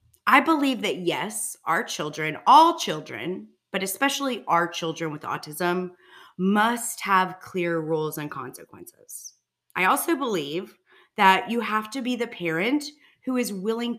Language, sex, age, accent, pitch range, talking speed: English, female, 30-49, American, 175-250 Hz, 140 wpm